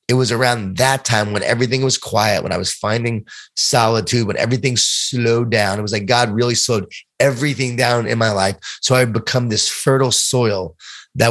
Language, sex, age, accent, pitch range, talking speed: English, male, 30-49, American, 105-125 Hz, 195 wpm